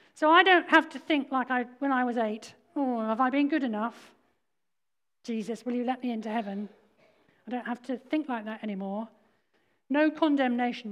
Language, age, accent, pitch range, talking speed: English, 40-59, British, 220-265 Hz, 190 wpm